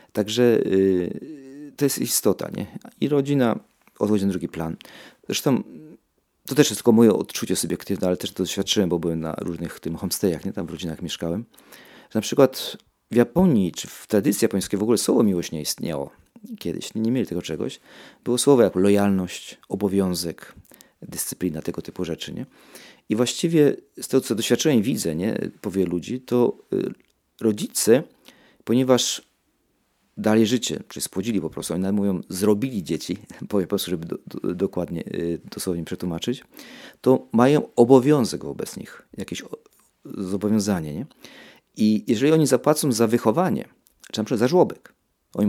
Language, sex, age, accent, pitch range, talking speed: Polish, male, 40-59, native, 90-125 Hz, 160 wpm